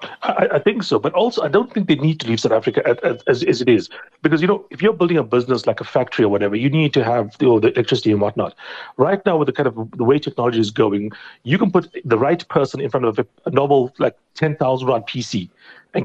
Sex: male